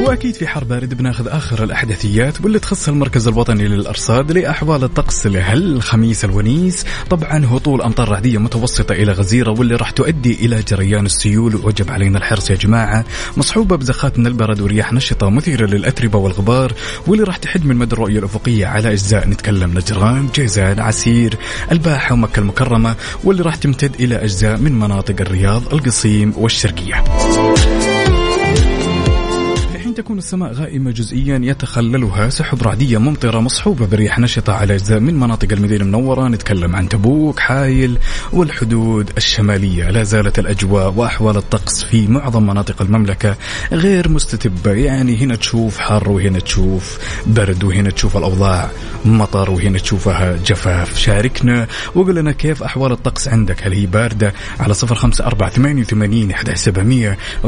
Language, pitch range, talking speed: Arabic, 100-130 Hz, 135 wpm